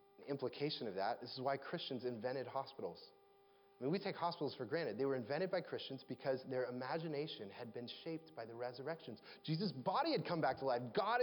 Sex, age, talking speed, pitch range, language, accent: male, 30-49, 205 wpm, 145-215 Hz, English, American